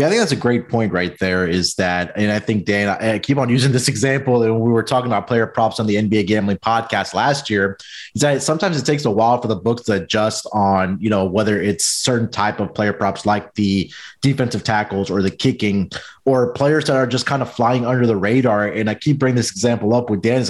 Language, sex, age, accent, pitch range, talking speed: English, male, 30-49, American, 110-135 Hz, 245 wpm